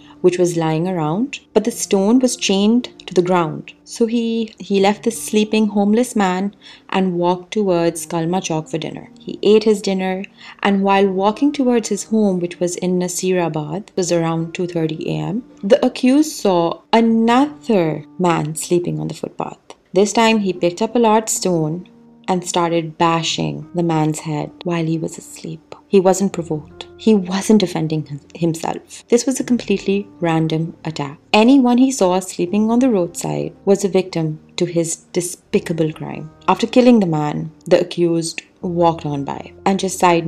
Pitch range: 165-215 Hz